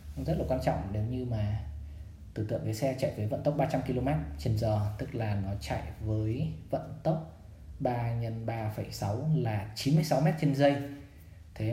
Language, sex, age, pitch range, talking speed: Vietnamese, male, 20-39, 105-135 Hz, 170 wpm